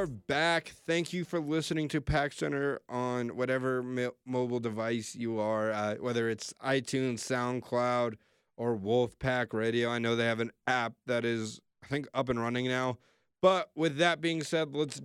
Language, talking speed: English, 170 wpm